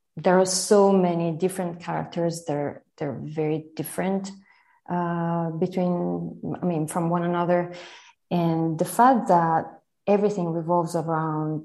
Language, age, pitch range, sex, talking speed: English, 20-39, 165-195 Hz, female, 125 wpm